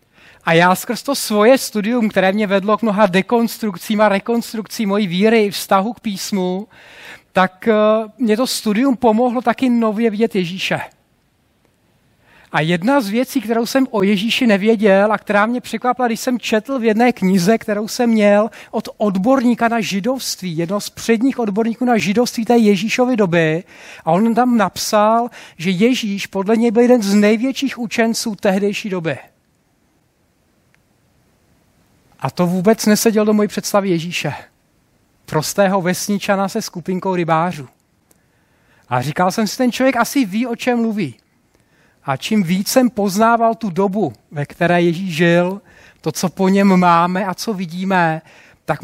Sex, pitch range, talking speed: male, 185-230 Hz, 150 wpm